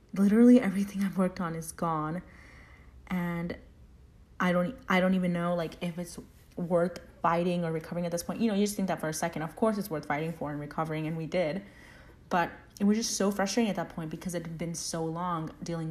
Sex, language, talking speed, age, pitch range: female, English, 225 wpm, 30-49, 160-210 Hz